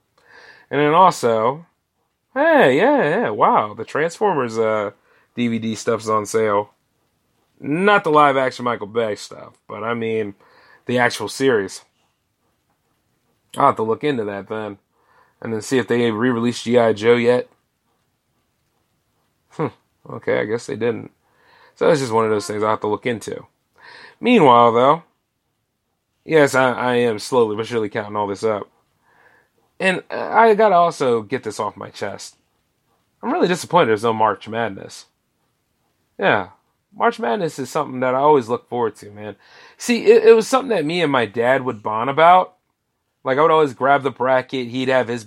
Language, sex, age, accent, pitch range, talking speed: English, male, 30-49, American, 110-140 Hz, 165 wpm